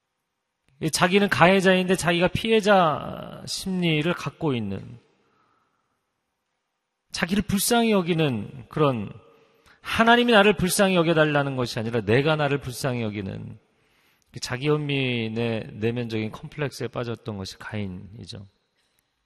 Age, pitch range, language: 40-59, 115-170 Hz, Korean